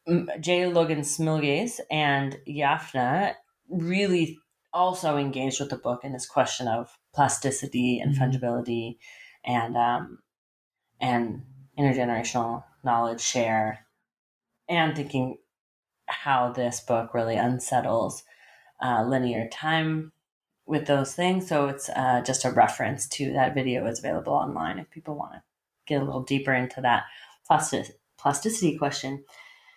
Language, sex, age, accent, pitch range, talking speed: English, female, 30-49, American, 125-155 Hz, 125 wpm